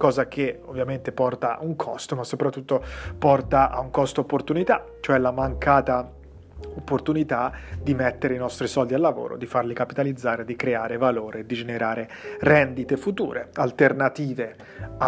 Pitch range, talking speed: 125-145 Hz, 145 wpm